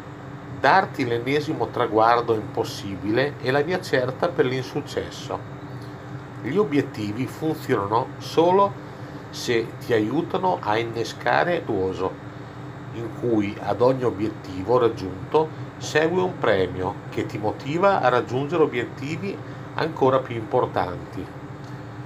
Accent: native